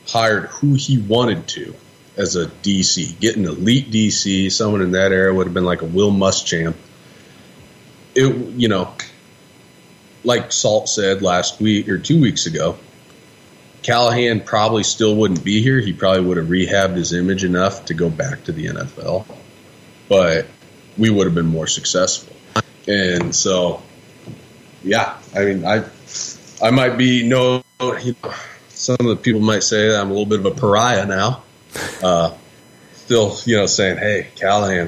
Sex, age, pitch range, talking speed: male, 30-49, 95-120 Hz, 160 wpm